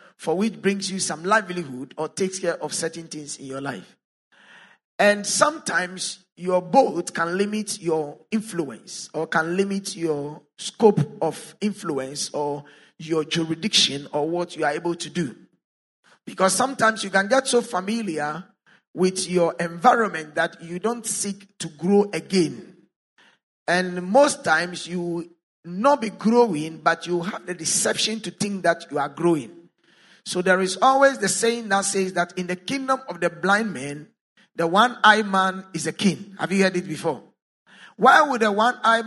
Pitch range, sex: 170-215 Hz, male